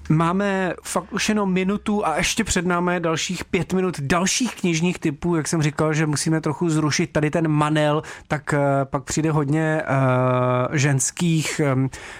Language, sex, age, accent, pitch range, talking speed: Czech, male, 30-49, native, 145-170 Hz, 150 wpm